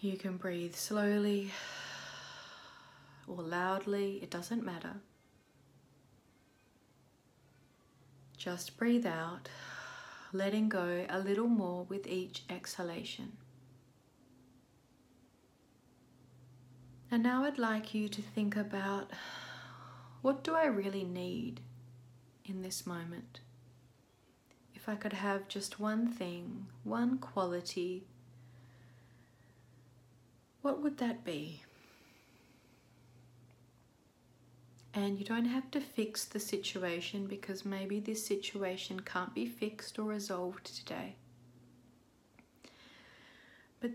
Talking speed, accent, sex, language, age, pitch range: 95 wpm, Australian, female, English, 30-49, 125-205 Hz